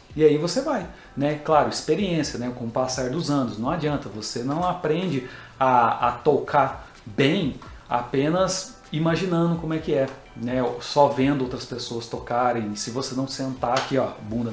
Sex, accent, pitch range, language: male, Brazilian, 130-170 Hz, Portuguese